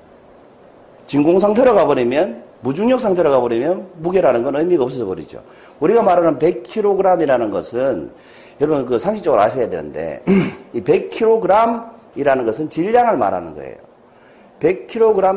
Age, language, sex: 40-59, Korean, male